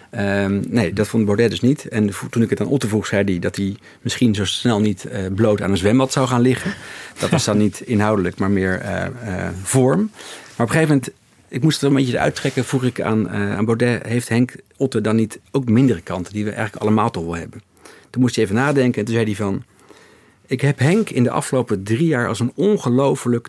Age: 50-69